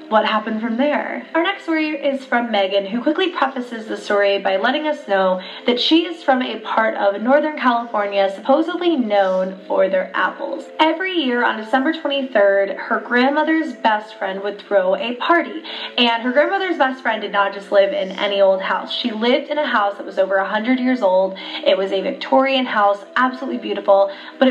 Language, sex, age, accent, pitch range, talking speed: English, female, 20-39, American, 205-280 Hz, 190 wpm